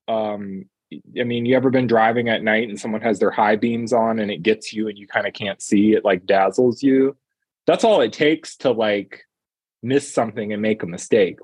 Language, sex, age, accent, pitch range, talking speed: English, male, 20-39, American, 105-135 Hz, 220 wpm